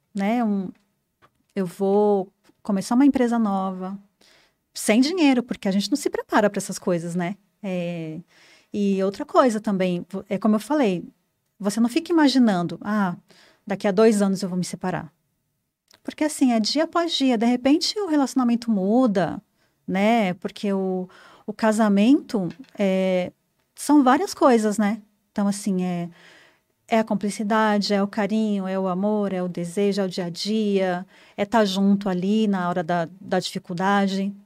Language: Portuguese